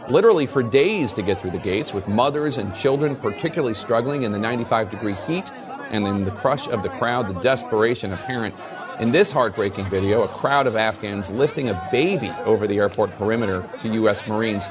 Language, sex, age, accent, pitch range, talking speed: English, male, 40-59, American, 105-140 Hz, 190 wpm